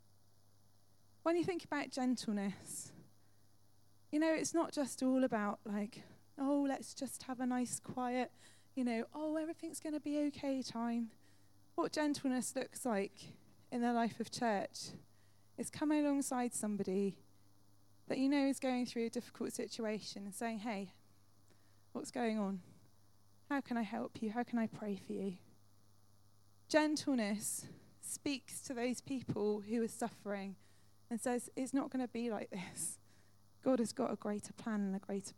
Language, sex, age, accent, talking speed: English, female, 20-39, British, 160 wpm